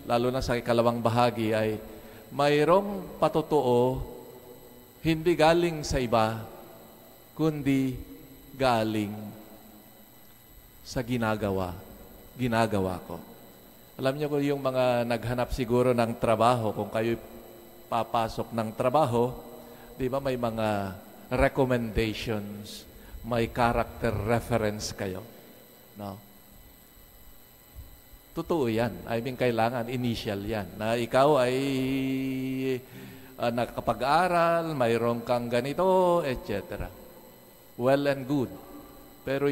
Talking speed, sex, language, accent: 95 wpm, male, English, Filipino